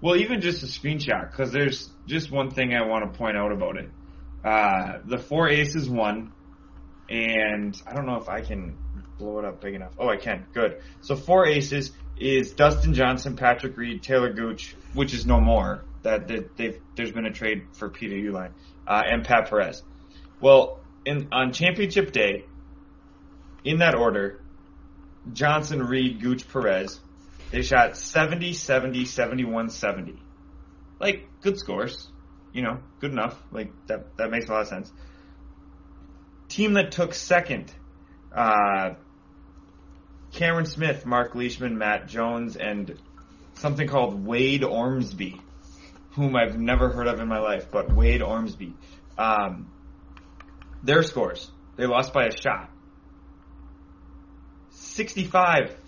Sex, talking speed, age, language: male, 145 wpm, 20-39, English